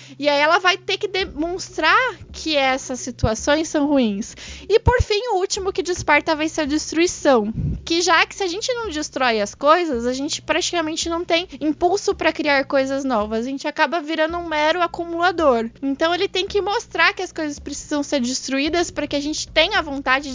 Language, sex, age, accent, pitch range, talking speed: Portuguese, female, 20-39, Brazilian, 270-345 Hz, 200 wpm